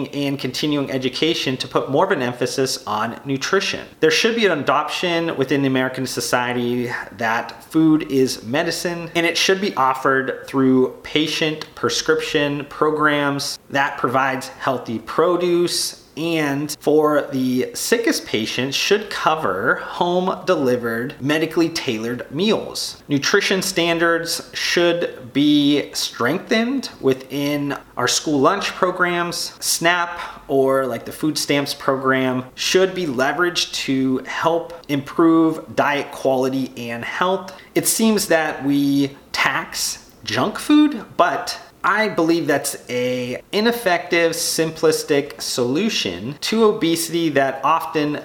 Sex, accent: male, American